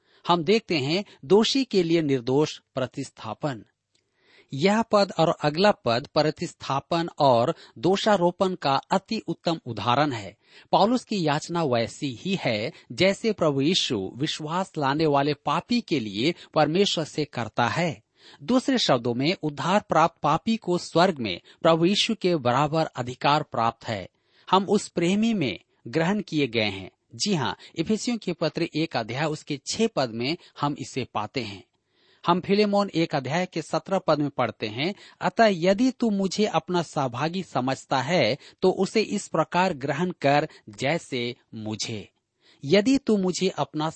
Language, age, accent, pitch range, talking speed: Hindi, 40-59, native, 135-190 Hz, 145 wpm